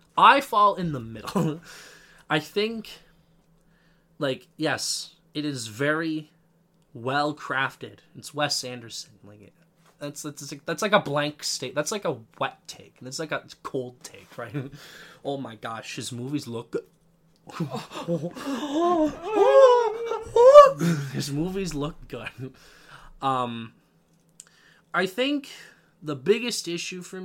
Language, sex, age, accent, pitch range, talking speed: English, male, 20-39, American, 140-175 Hz, 120 wpm